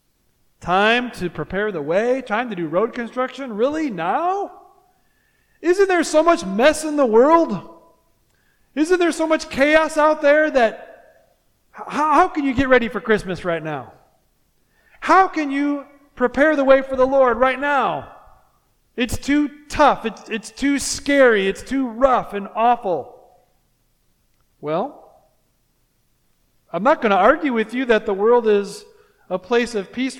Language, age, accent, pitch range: English, 40-59, American, 170-265 Hz